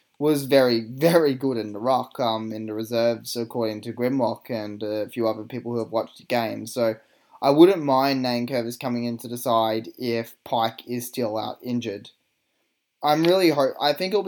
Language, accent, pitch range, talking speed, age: English, Australian, 115-135 Hz, 190 wpm, 10-29